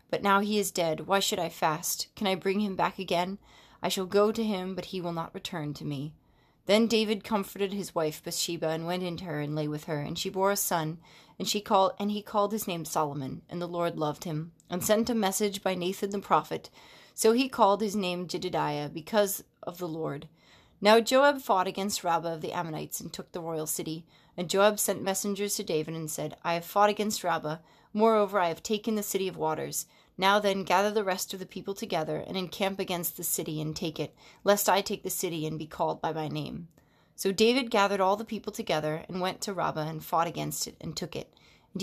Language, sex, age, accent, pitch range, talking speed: English, female, 30-49, American, 165-205 Hz, 230 wpm